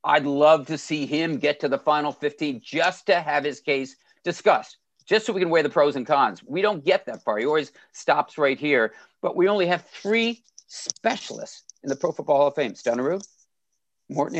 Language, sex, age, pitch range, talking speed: English, male, 50-69, 145-205 Hz, 210 wpm